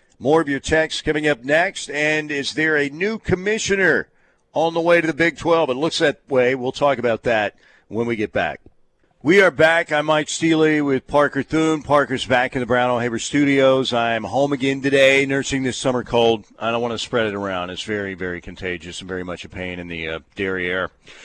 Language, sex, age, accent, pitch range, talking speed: English, male, 50-69, American, 125-155 Hz, 220 wpm